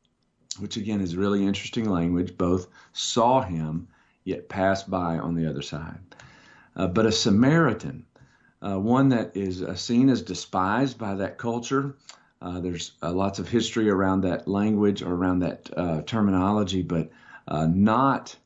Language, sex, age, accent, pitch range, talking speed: English, male, 50-69, American, 85-110 Hz, 155 wpm